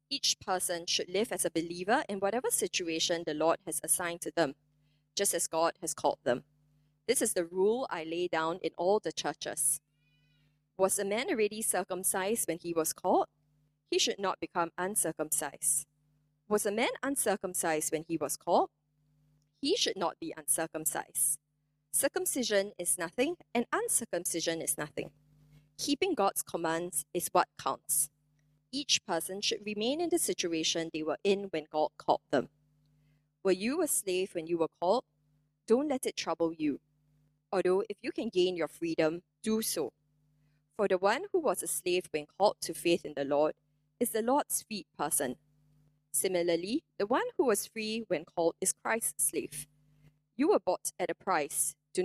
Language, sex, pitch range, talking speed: English, female, 150-195 Hz, 170 wpm